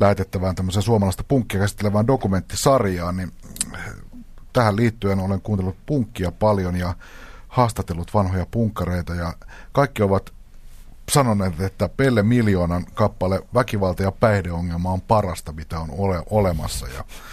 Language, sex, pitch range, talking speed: Finnish, male, 90-110 Hz, 115 wpm